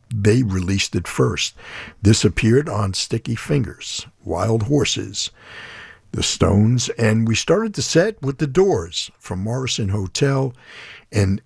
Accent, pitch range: American, 95-130 Hz